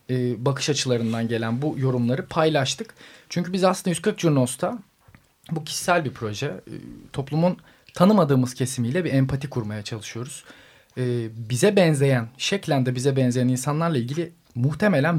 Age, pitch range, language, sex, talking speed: 40-59, 125-165 Hz, Turkish, male, 120 wpm